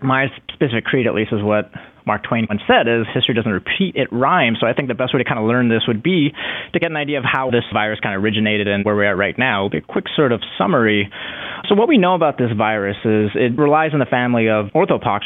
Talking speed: 265 wpm